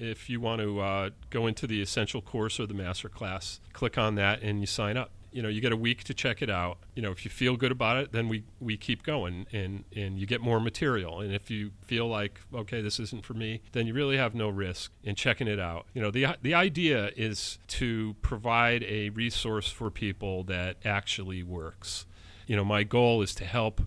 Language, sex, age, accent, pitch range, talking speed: English, male, 40-59, American, 100-120 Hz, 230 wpm